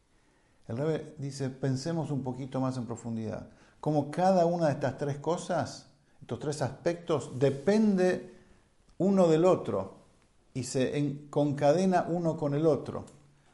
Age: 50-69